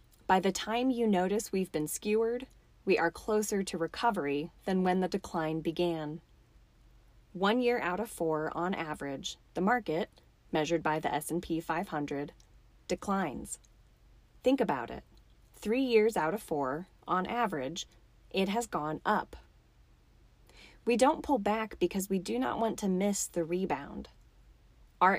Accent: American